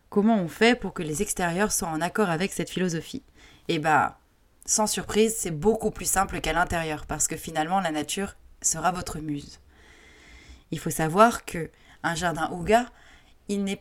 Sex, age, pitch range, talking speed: female, 20-39, 160-205 Hz, 170 wpm